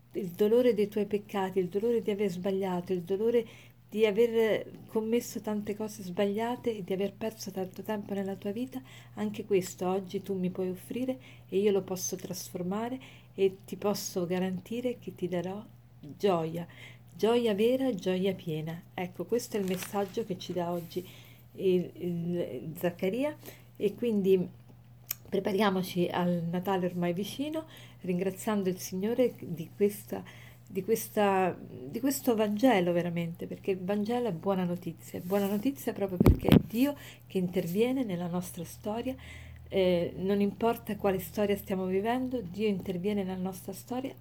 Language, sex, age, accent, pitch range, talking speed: Italian, female, 40-59, native, 180-215 Hz, 145 wpm